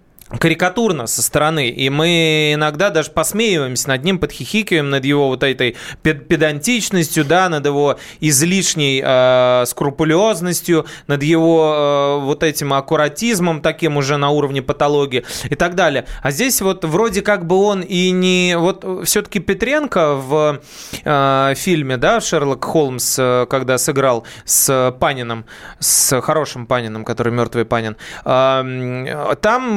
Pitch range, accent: 135-180 Hz, native